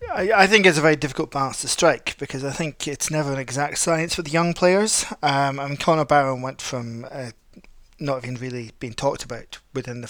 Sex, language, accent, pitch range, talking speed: male, English, British, 130-155 Hz, 220 wpm